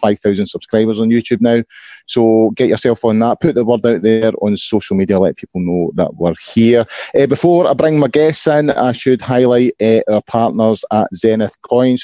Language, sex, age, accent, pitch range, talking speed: English, male, 30-49, British, 100-120 Hz, 205 wpm